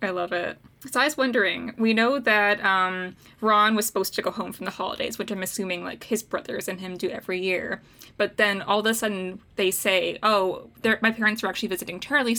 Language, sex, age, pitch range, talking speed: English, female, 10-29, 190-225 Hz, 225 wpm